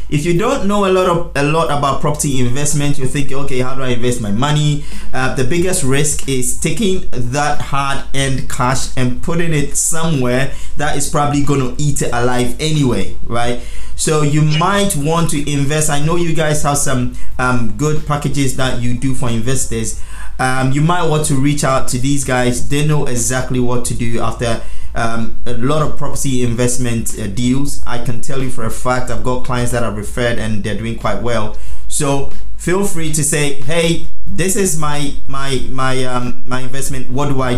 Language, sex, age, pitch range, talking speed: English, male, 20-39, 125-150 Hz, 200 wpm